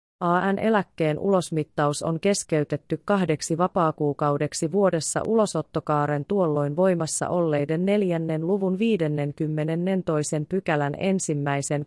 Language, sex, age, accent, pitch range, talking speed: Finnish, female, 30-49, native, 155-195 Hz, 85 wpm